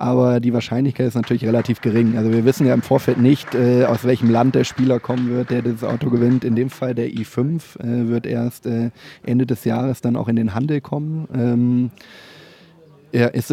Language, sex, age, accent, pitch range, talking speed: German, male, 20-39, German, 110-125 Hz, 210 wpm